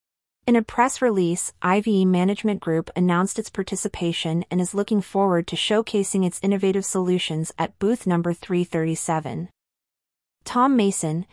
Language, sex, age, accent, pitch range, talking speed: English, female, 30-49, American, 170-205 Hz, 130 wpm